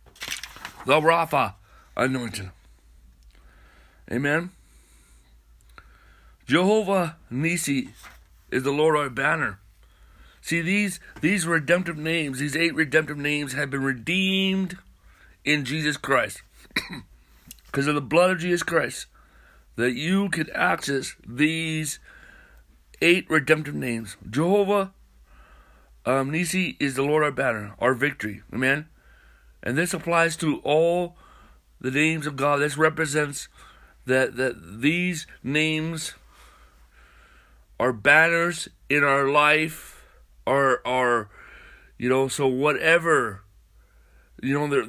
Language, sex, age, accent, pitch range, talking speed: English, male, 60-79, American, 120-160 Hz, 110 wpm